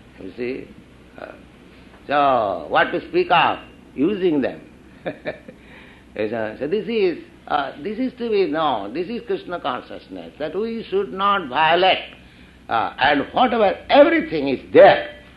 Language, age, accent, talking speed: English, 60-79, Indian, 130 wpm